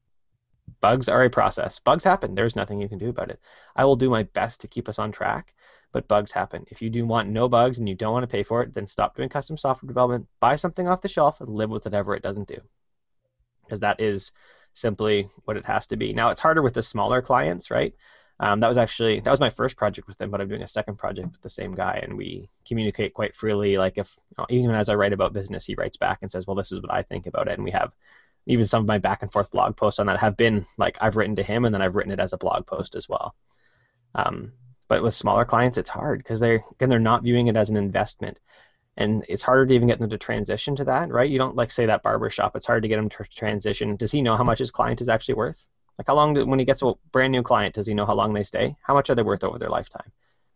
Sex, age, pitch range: male, 20-39, 105-125 Hz